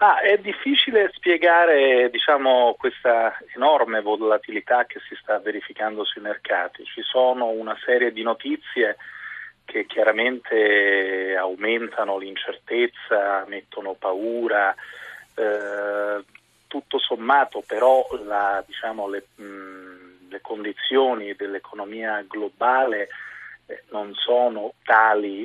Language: Italian